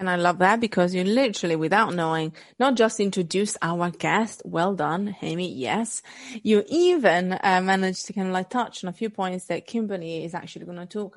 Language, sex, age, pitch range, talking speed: English, female, 30-49, 165-210 Hz, 205 wpm